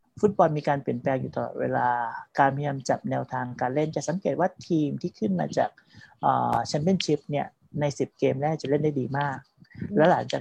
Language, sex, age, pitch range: Thai, male, 30-49, 135-175 Hz